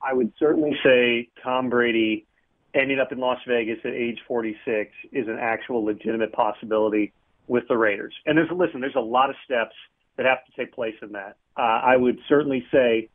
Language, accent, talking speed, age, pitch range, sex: English, American, 195 wpm, 40-59, 120-140 Hz, male